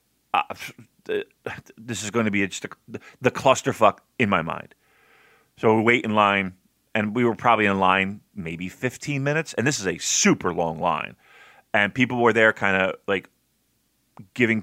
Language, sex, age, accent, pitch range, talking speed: English, male, 30-49, American, 95-125 Hz, 170 wpm